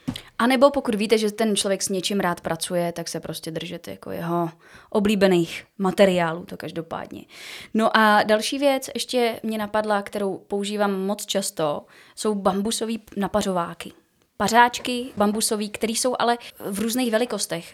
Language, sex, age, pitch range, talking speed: Czech, female, 20-39, 190-220 Hz, 145 wpm